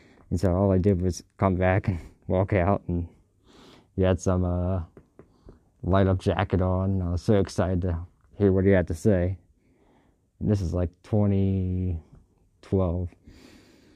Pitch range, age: 90-100 Hz, 20-39